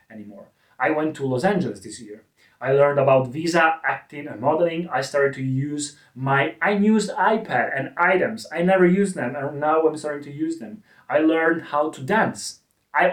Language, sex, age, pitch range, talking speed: Italian, male, 30-49, 120-155 Hz, 185 wpm